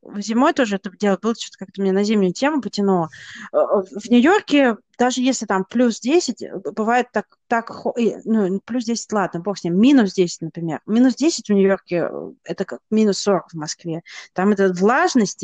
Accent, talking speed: native, 175 wpm